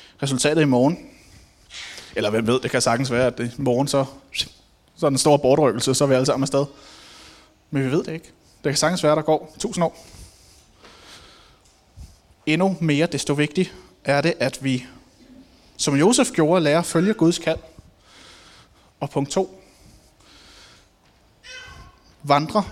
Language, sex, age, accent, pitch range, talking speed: Danish, male, 20-39, native, 135-165 Hz, 155 wpm